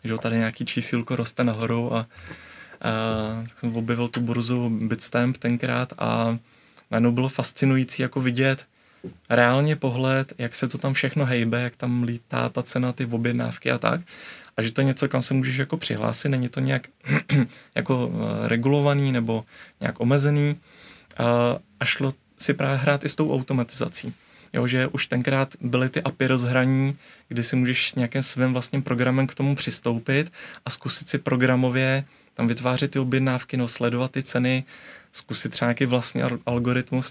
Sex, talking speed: male, 165 wpm